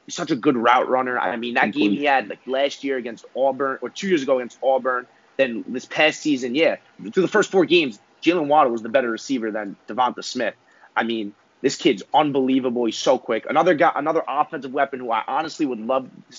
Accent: American